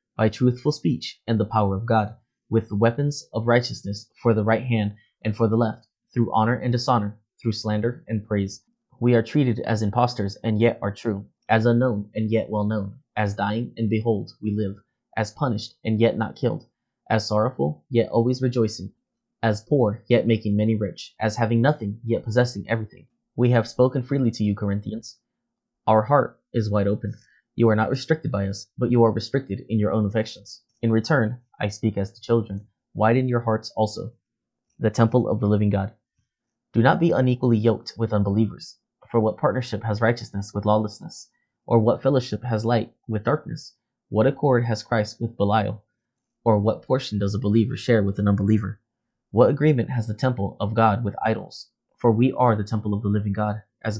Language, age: English, 20-39